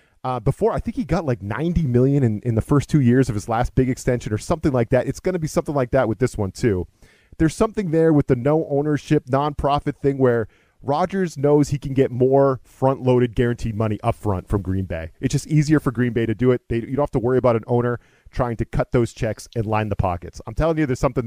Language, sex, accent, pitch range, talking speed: English, male, American, 115-145 Hz, 255 wpm